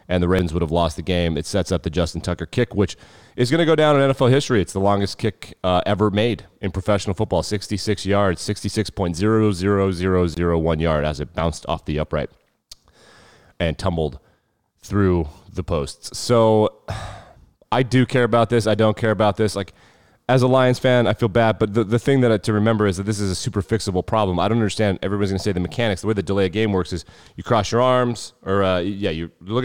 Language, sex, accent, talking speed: English, male, American, 225 wpm